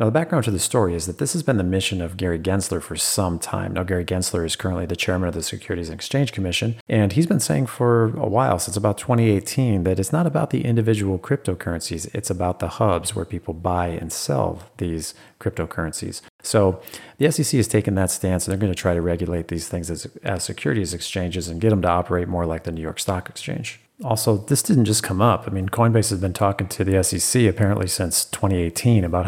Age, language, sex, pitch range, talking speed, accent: 40-59, English, male, 90-110 Hz, 225 wpm, American